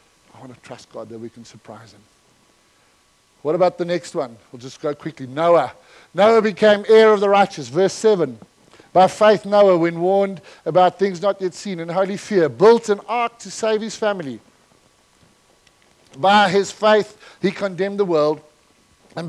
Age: 50-69